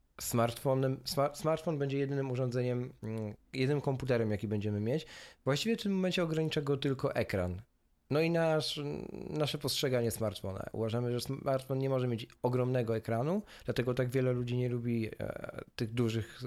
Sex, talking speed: male, 140 wpm